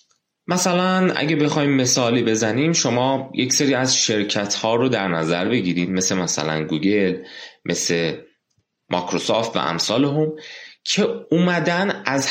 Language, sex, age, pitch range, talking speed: Persian, male, 30-49, 95-140 Hz, 125 wpm